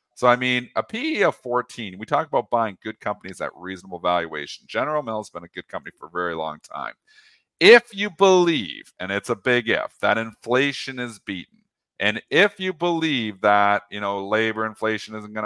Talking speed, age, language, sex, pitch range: 200 wpm, 40-59, English, male, 100-125 Hz